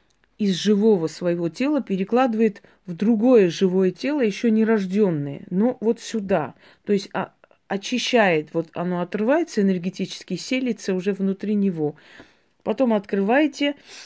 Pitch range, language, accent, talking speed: 175-215 Hz, Russian, native, 120 wpm